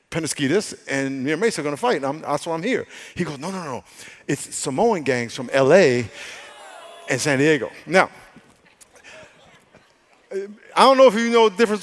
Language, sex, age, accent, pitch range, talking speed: English, male, 50-69, American, 145-205 Hz, 180 wpm